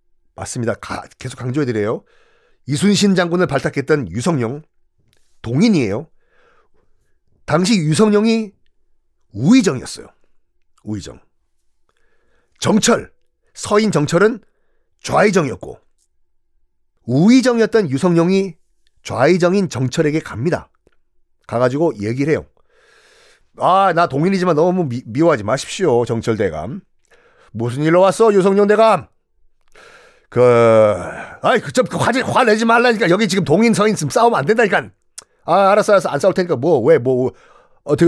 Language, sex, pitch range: Korean, male, 125-200 Hz